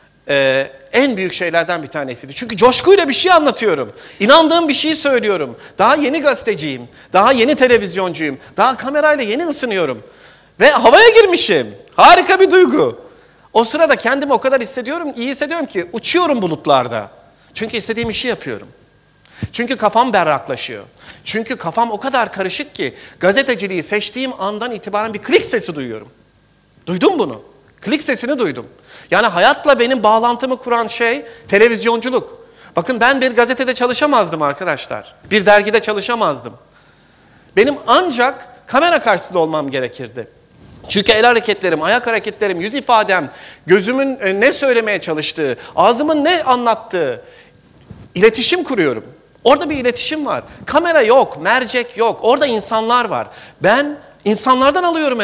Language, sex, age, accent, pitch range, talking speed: Turkish, male, 40-59, native, 200-285 Hz, 130 wpm